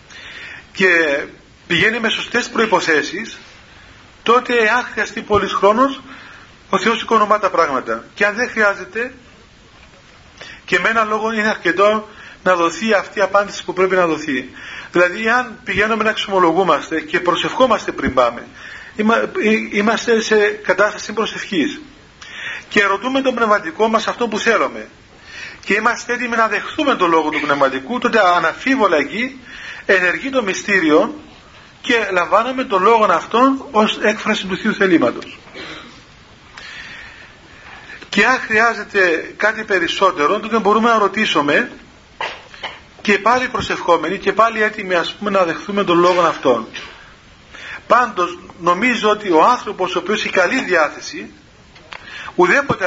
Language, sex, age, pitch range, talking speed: Greek, male, 40-59, 190-230 Hz, 125 wpm